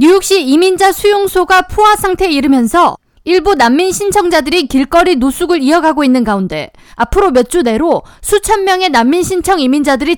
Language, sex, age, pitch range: Korean, female, 20-39, 270-360 Hz